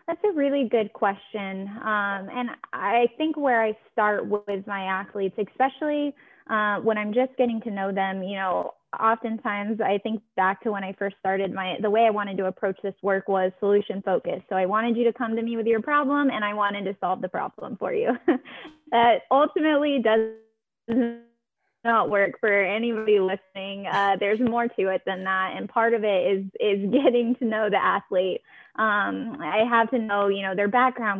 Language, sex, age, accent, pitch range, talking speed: English, female, 10-29, American, 190-230 Hz, 195 wpm